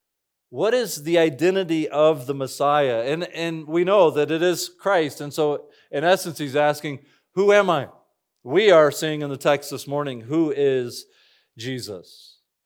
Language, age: English, 40-59